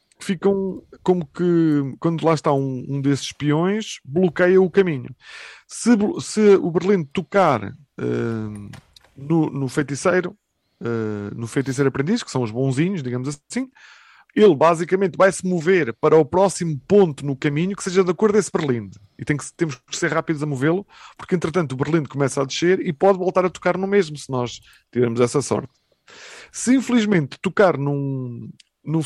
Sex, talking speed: male, 170 wpm